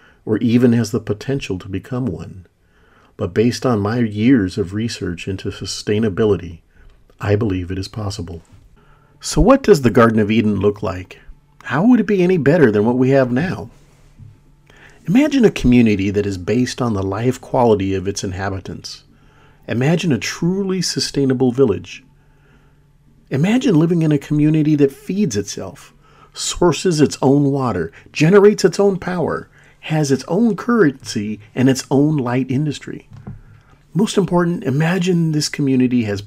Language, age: English, 40-59